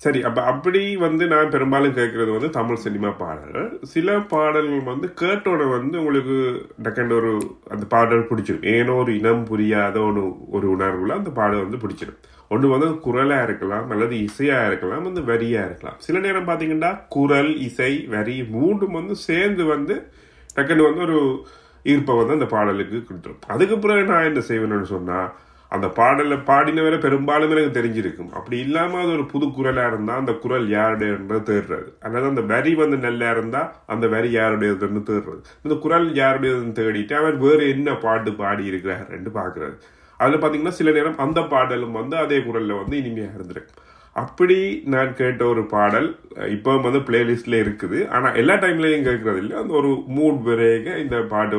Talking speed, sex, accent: 155 wpm, male, native